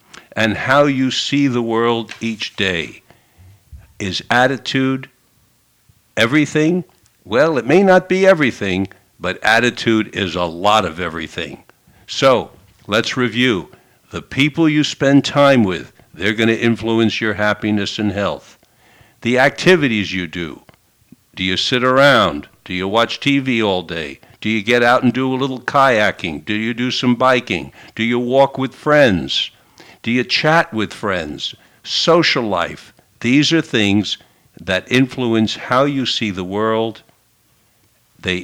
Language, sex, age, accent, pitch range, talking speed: English, male, 60-79, American, 105-135 Hz, 140 wpm